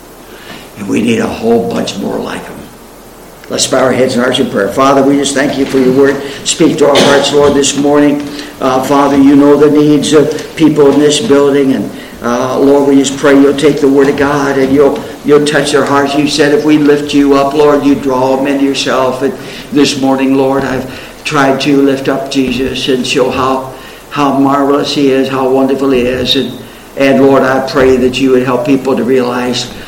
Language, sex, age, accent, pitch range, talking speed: English, male, 60-79, American, 135-150 Hz, 215 wpm